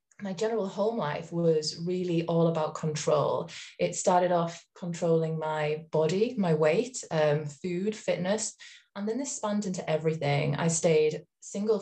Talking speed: 145 wpm